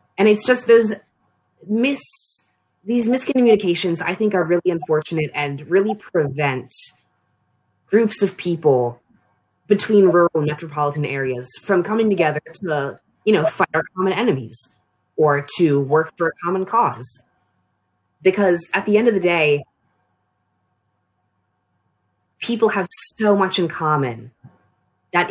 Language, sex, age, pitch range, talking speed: English, female, 20-39, 120-185 Hz, 130 wpm